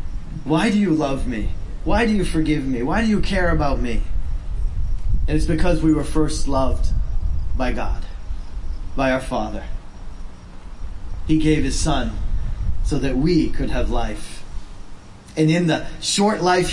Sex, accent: male, American